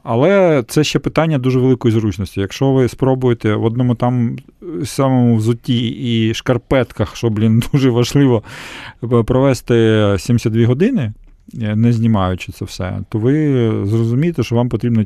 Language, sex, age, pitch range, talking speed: Ukrainian, male, 40-59, 105-125 Hz, 135 wpm